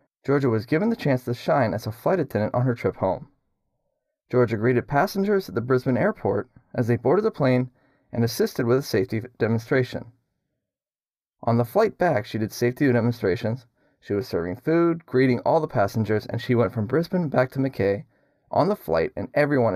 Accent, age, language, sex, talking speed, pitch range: American, 30-49, English, male, 190 wpm, 110-135 Hz